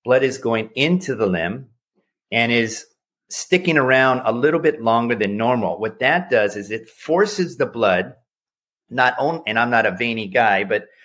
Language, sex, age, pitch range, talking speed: English, male, 50-69, 105-135 Hz, 180 wpm